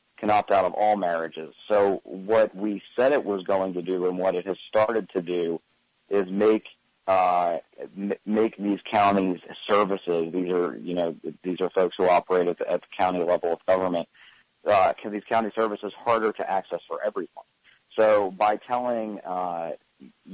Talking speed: 180 wpm